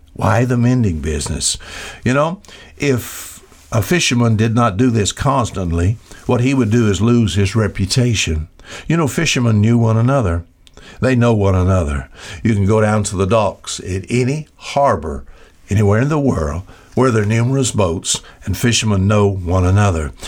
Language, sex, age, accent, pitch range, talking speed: English, male, 60-79, American, 95-125 Hz, 165 wpm